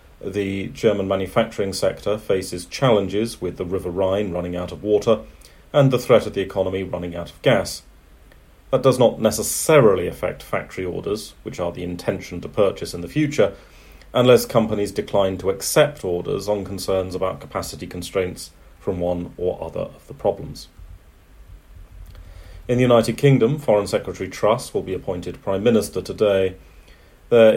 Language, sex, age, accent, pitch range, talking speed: English, male, 40-59, British, 85-105 Hz, 155 wpm